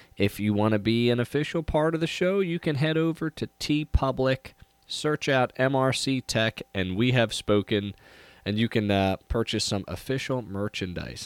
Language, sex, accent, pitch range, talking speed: English, male, American, 90-125 Hz, 180 wpm